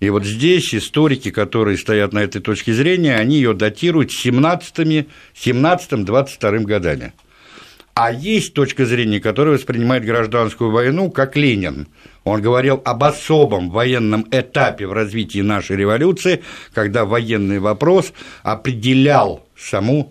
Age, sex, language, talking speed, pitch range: 60-79, male, Russian, 120 wpm, 105-145 Hz